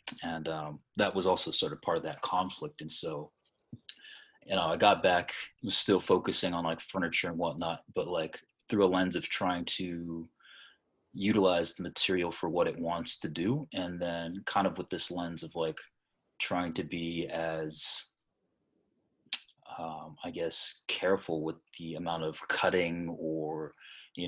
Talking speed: 165 wpm